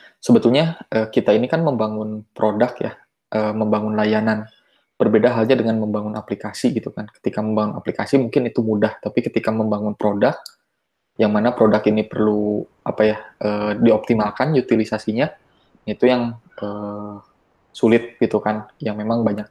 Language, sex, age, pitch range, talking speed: Indonesian, male, 20-39, 105-115 Hz, 130 wpm